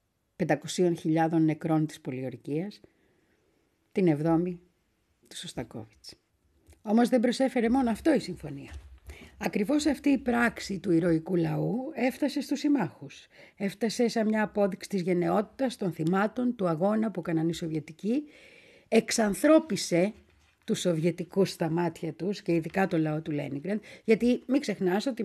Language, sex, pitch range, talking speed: Greek, female, 170-245 Hz, 130 wpm